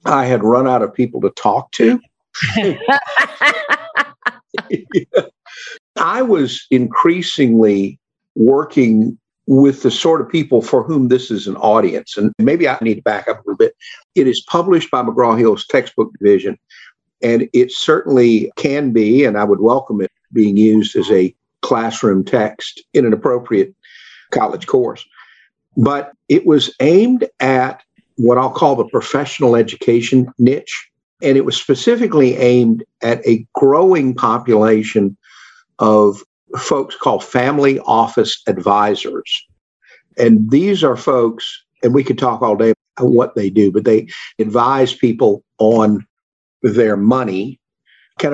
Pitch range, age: 110-150 Hz, 50-69